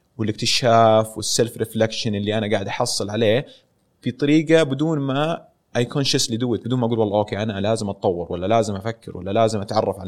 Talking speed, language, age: 175 wpm, Arabic, 30-49